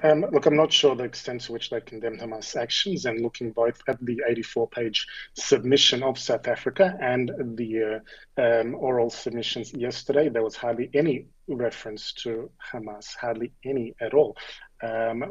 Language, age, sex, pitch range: English, 30-49, male, 115-130 Hz